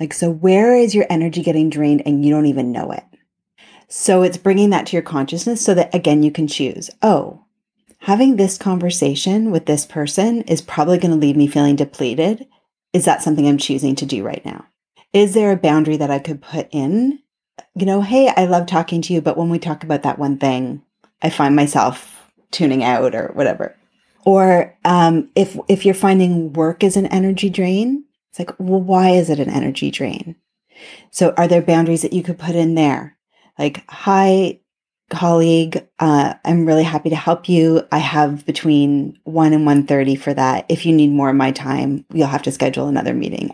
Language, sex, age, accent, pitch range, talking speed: English, female, 30-49, American, 145-185 Hz, 200 wpm